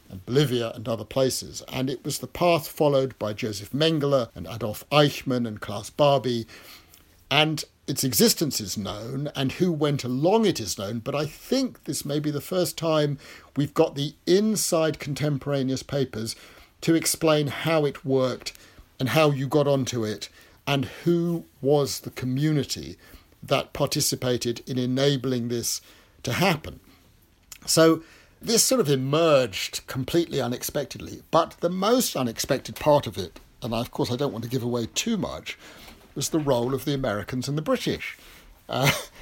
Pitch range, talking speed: 115-150 Hz, 160 wpm